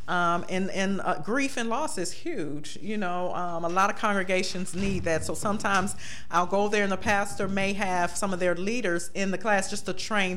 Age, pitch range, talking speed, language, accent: 40-59, 175-210 Hz, 220 wpm, English, American